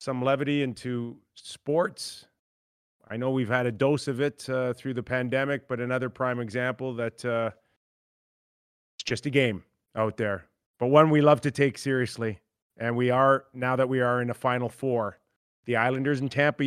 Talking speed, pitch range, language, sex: 180 wpm, 120-145 Hz, English, male